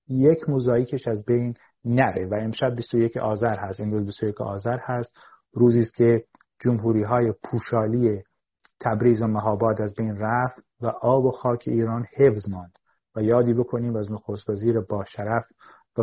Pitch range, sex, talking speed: 110-130 Hz, male, 145 wpm